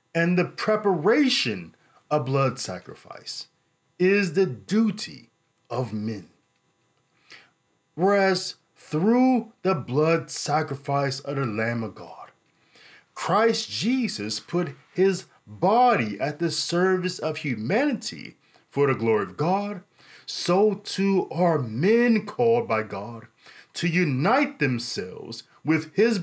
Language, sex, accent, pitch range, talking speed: English, male, American, 140-190 Hz, 110 wpm